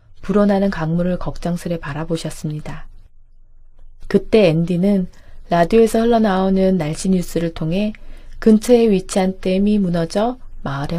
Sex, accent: female, native